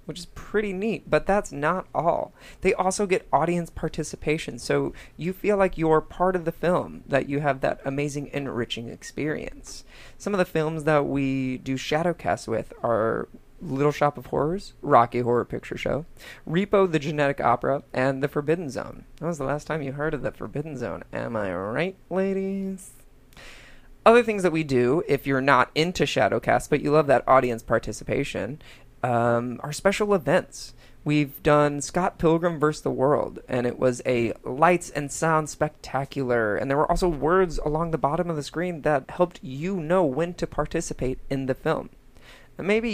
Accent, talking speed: American, 175 wpm